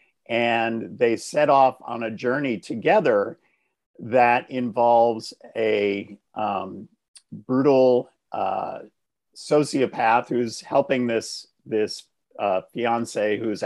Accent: American